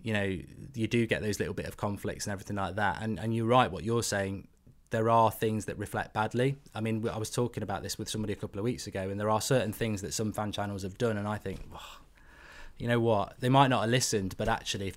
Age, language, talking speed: 20-39, English, 270 wpm